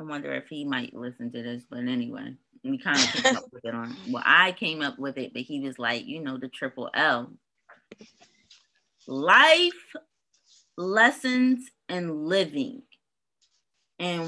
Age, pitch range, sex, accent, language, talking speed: 20-39, 155-255 Hz, female, American, English, 160 wpm